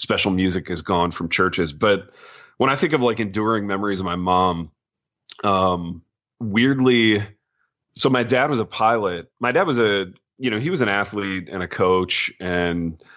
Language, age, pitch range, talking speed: English, 30-49, 90-105 Hz, 180 wpm